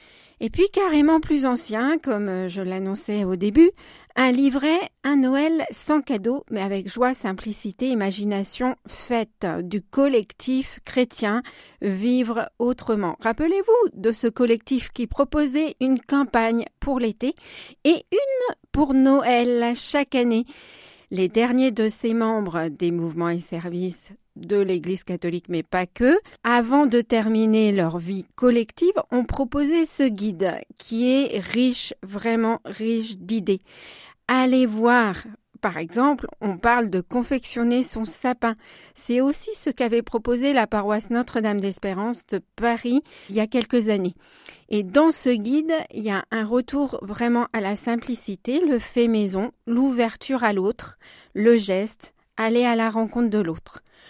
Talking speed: 150 wpm